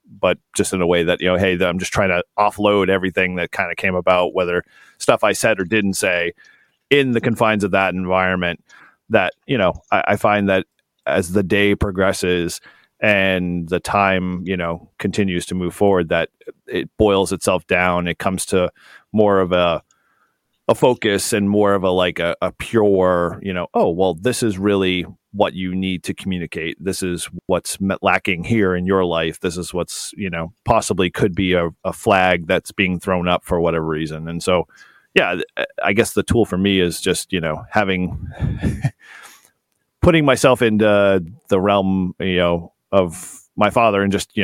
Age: 40-59